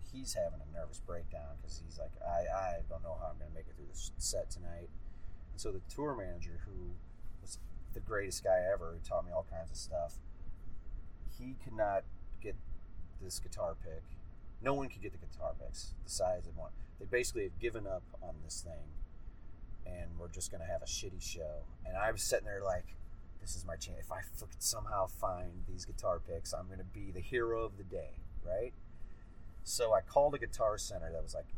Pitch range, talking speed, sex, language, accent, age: 85-115 Hz, 205 wpm, male, English, American, 30-49